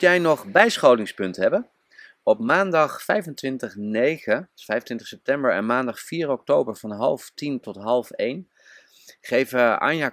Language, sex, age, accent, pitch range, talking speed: Dutch, male, 30-49, Dutch, 100-130 Hz, 125 wpm